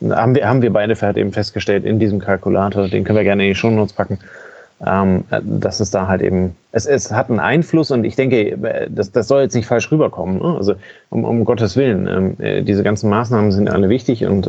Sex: male